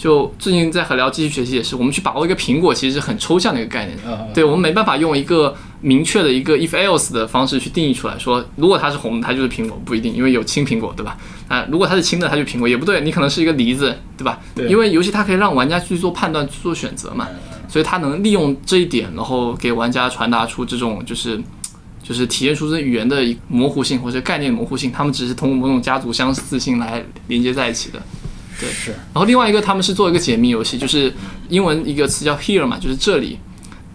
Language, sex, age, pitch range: Chinese, male, 20-39, 125-170 Hz